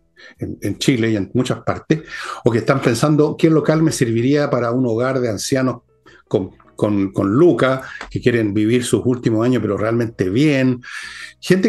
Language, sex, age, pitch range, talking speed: Spanish, male, 60-79, 125-160 Hz, 170 wpm